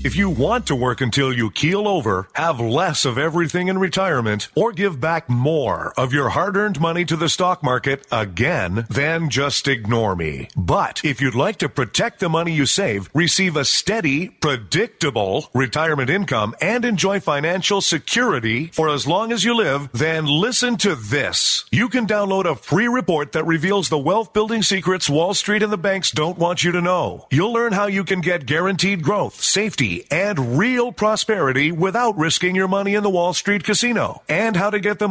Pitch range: 145-205 Hz